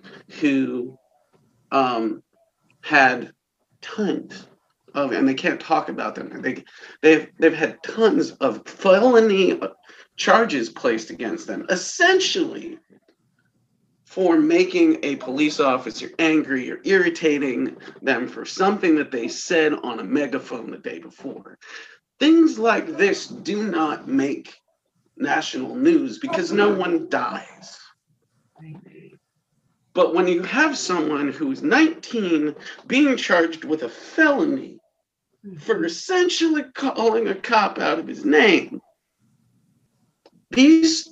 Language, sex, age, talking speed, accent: English, male, 40-59, 110 wpm, American